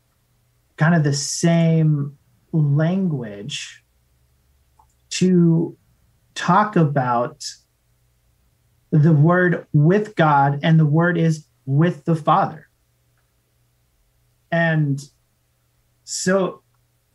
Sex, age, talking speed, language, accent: male, 30-49, 75 wpm, English, American